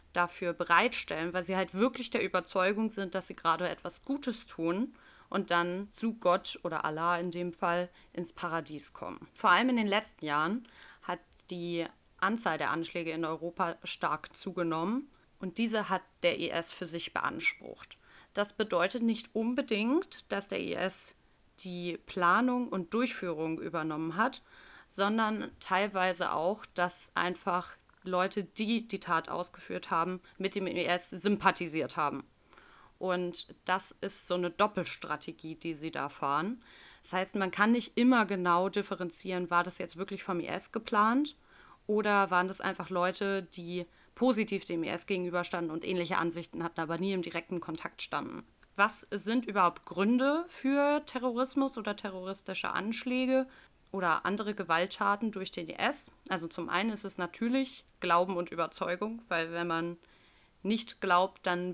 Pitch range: 175-215 Hz